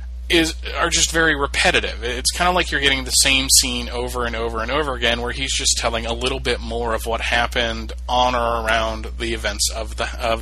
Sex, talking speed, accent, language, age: male, 225 wpm, American, English, 30-49